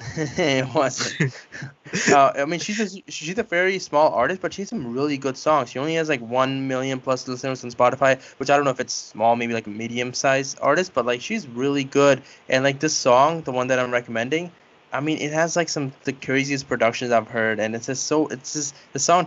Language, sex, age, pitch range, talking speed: English, male, 20-39, 110-140 Hz, 230 wpm